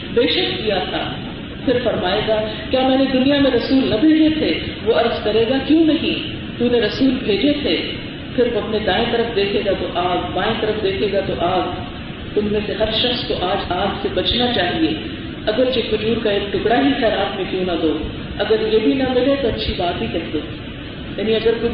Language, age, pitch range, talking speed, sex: Urdu, 40-59, 215-285 Hz, 220 wpm, female